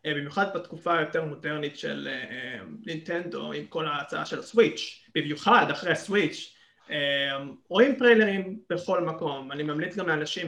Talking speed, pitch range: 145 wpm, 150-215 Hz